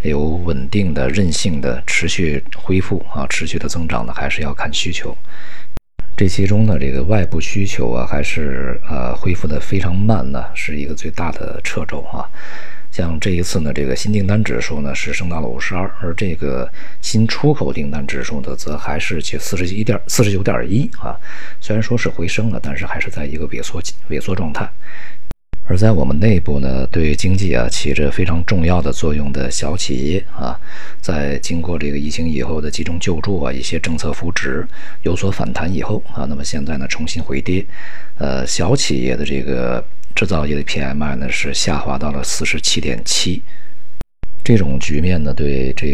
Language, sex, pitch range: Chinese, male, 70-95 Hz